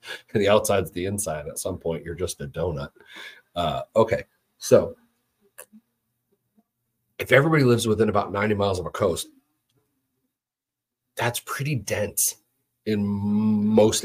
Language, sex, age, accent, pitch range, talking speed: English, male, 40-59, American, 100-120 Hz, 125 wpm